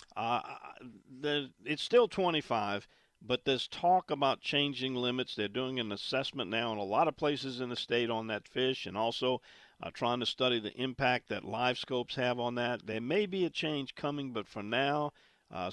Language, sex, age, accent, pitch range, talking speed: English, male, 50-69, American, 115-140 Hz, 195 wpm